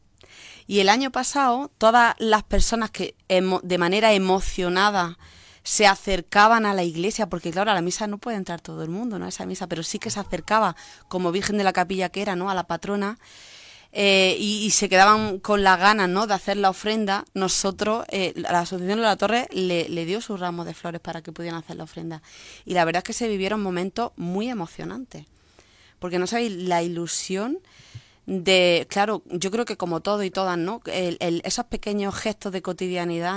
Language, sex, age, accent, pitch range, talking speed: Spanish, female, 30-49, Spanish, 175-205 Hz, 200 wpm